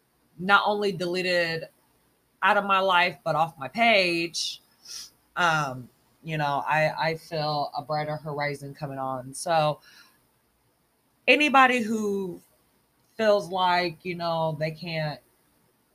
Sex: female